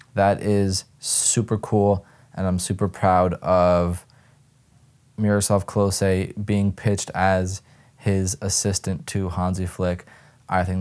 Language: English